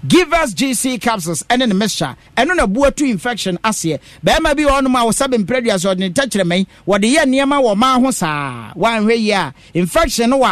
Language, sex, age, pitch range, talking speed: English, male, 50-69, 180-255 Hz, 165 wpm